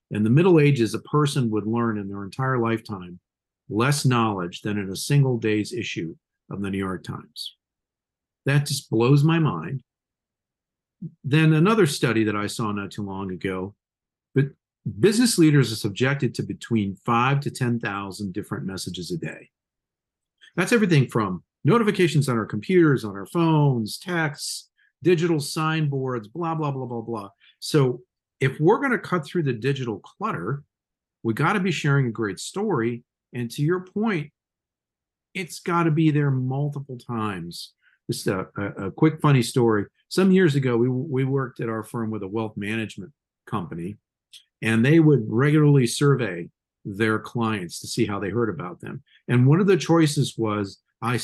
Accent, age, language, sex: American, 50-69, English, male